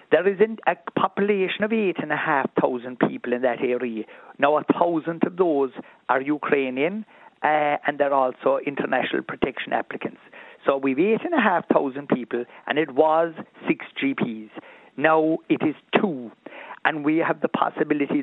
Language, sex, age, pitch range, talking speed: English, male, 50-69, 135-165 Hz, 140 wpm